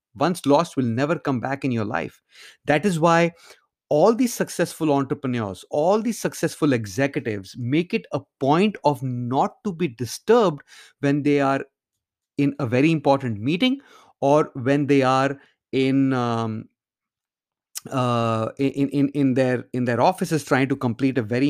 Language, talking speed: English, 155 wpm